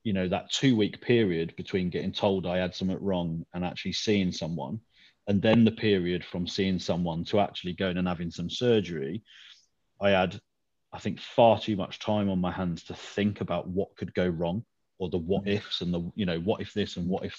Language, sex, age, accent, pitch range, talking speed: English, male, 30-49, British, 90-105 Hz, 215 wpm